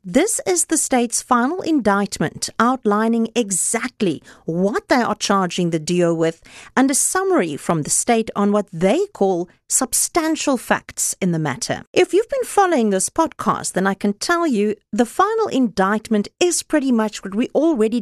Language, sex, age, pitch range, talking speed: English, female, 50-69, 195-305 Hz, 165 wpm